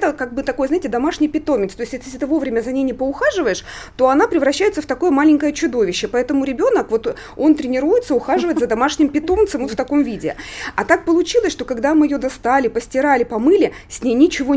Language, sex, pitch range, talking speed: Russian, female, 235-295 Hz, 200 wpm